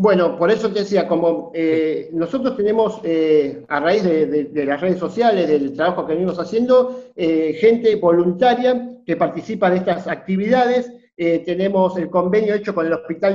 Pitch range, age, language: 175-225 Hz, 50-69, Spanish